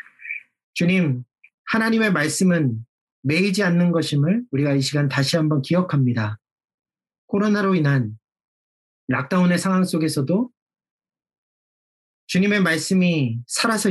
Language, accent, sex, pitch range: Korean, native, male, 130-185 Hz